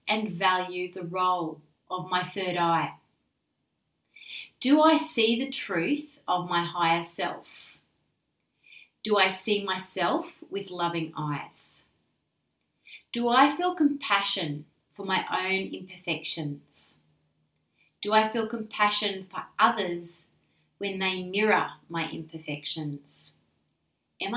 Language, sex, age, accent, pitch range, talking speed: English, female, 30-49, Australian, 170-225 Hz, 110 wpm